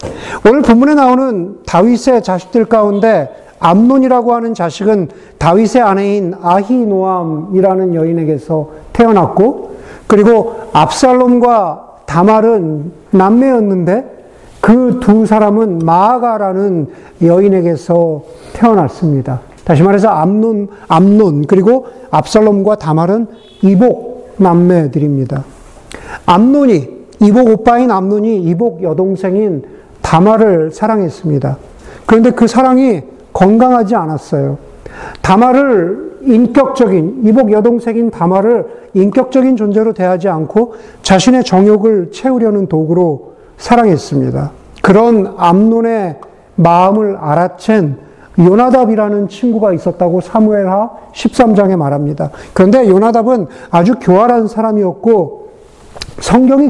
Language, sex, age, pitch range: Korean, male, 50-69, 175-230 Hz